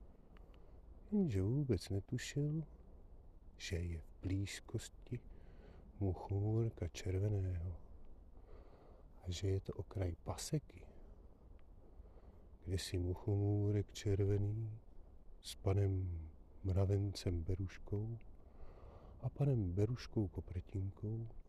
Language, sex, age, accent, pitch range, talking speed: Czech, male, 40-59, native, 80-100 Hz, 75 wpm